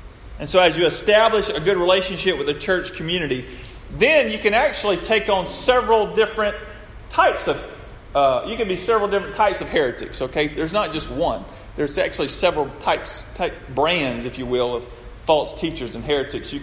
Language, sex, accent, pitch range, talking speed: English, male, American, 130-195 Hz, 175 wpm